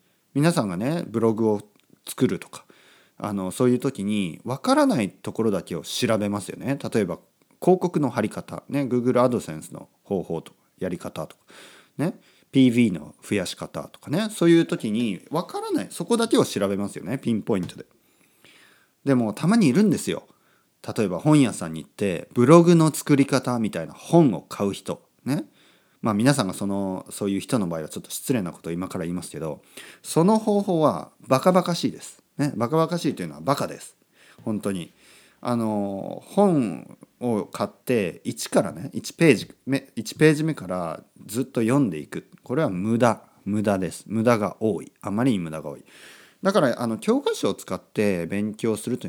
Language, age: Japanese, 40-59